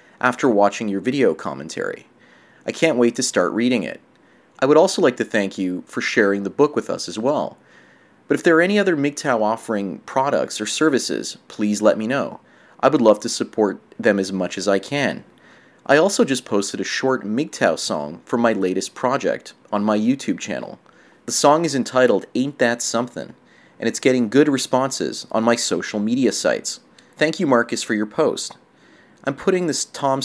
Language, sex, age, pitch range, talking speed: English, male, 30-49, 105-135 Hz, 190 wpm